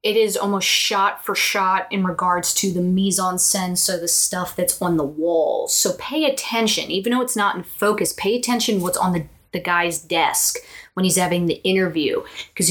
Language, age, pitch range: English, 20-39, 175-225 Hz